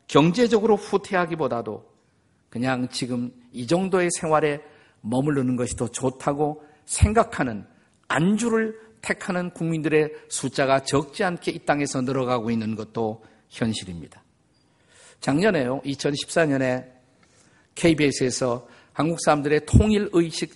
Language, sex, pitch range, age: Korean, male, 125-170 Hz, 50-69